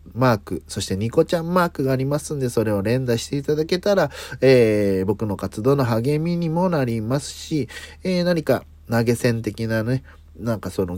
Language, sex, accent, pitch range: Japanese, male, native, 85-130 Hz